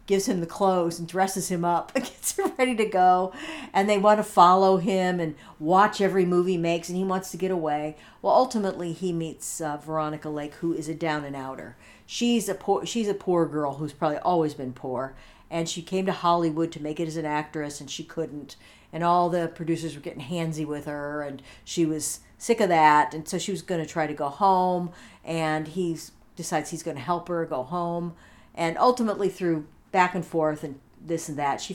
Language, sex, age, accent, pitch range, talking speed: English, female, 50-69, American, 150-185 Hz, 215 wpm